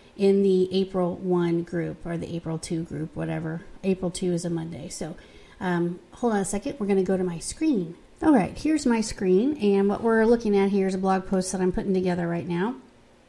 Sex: female